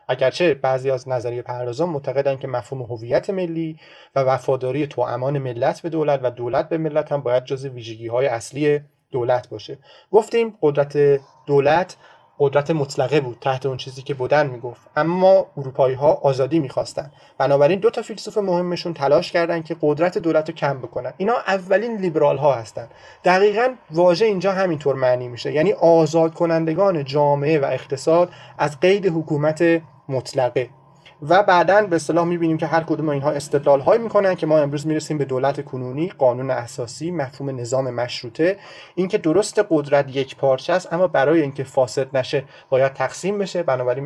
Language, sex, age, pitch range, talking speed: Persian, male, 30-49, 130-170 Hz, 160 wpm